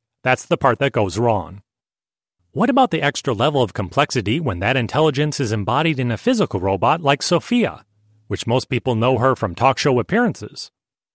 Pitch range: 115-160 Hz